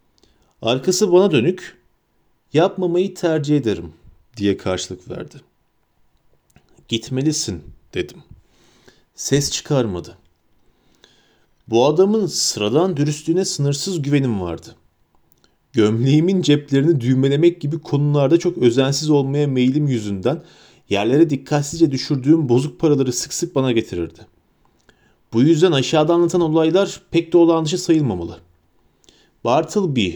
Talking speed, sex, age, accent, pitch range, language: 100 wpm, male, 40-59, native, 120-180 Hz, Turkish